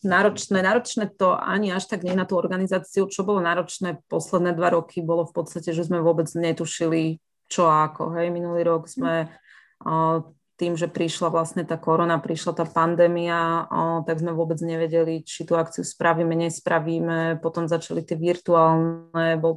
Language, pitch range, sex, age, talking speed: Slovak, 165-175 Hz, female, 30-49, 160 wpm